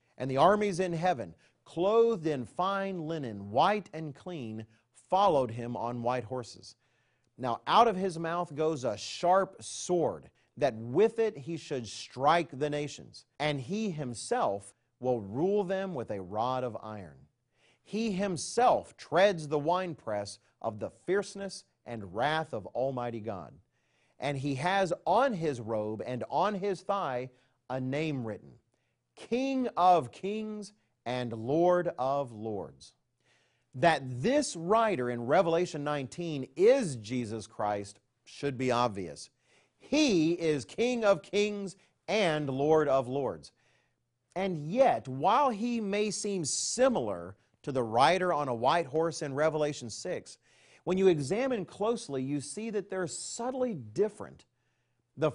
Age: 40-59